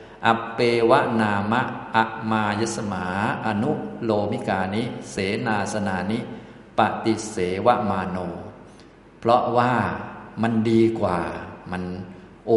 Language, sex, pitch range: Thai, male, 100-115 Hz